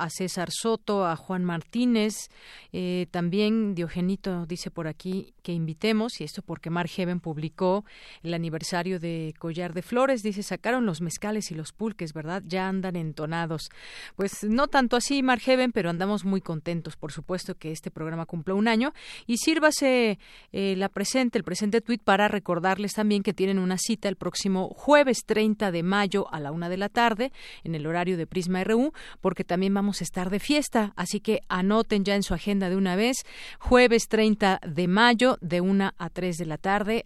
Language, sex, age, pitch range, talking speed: Spanish, female, 40-59, 175-215 Hz, 185 wpm